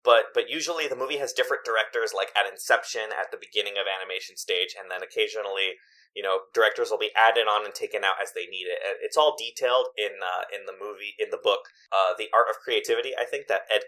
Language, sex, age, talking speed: English, male, 30-49, 235 wpm